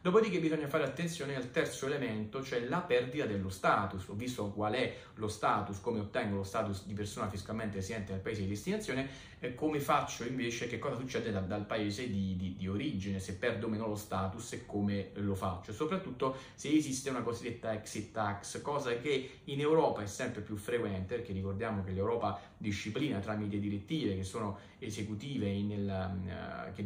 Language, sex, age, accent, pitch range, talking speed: Italian, male, 30-49, native, 100-125 Hz, 175 wpm